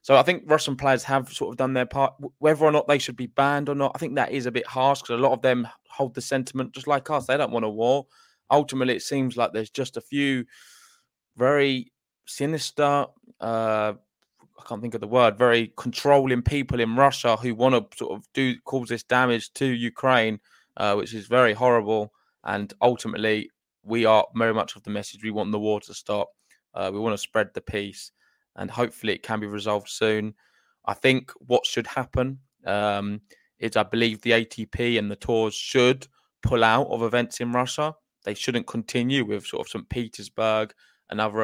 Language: English